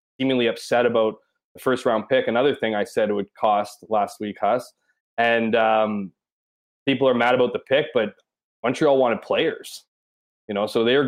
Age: 20-39